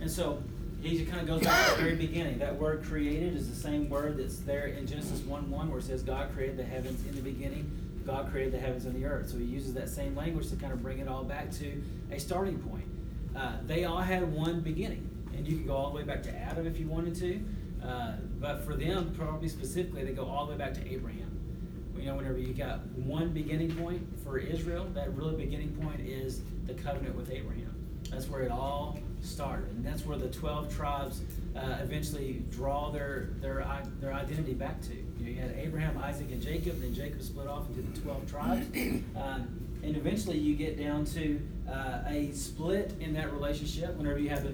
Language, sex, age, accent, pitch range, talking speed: English, male, 30-49, American, 140-165 Hz, 220 wpm